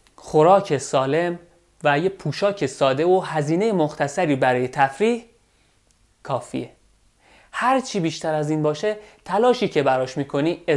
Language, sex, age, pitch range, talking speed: Persian, male, 30-49, 140-180 Hz, 115 wpm